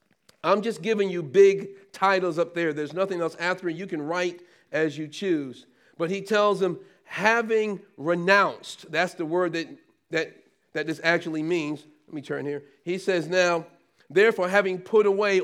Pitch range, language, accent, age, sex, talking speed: 160-205 Hz, English, American, 40-59, male, 170 wpm